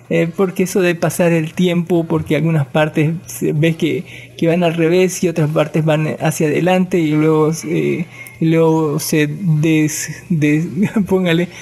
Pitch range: 160-190 Hz